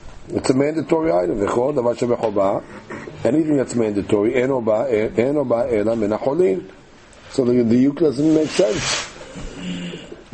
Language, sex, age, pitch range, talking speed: English, male, 50-69, 110-130 Hz, 115 wpm